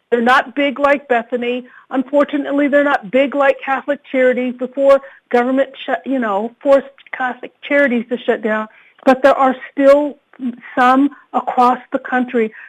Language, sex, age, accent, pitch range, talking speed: English, female, 50-69, American, 235-270 Hz, 140 wpm